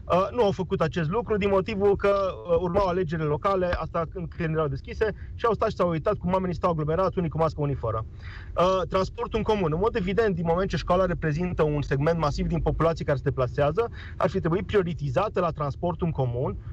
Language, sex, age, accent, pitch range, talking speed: Romanian, male, 30-49, native, 150-195 Hz, 220 wpm